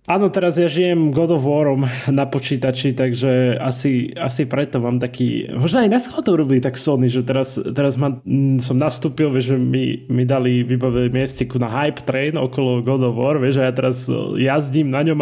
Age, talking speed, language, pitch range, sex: 20-39, 190 wpm, Slovak, 125-155 Hz, male